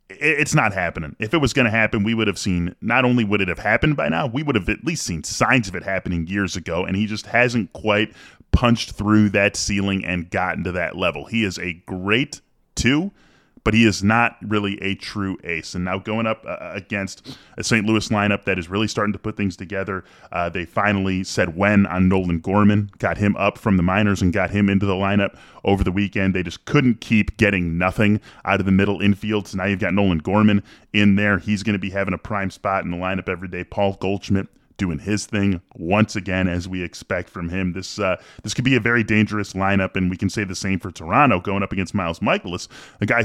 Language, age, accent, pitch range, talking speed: English, 10-29, American, 95-110 Hz, 235 wpm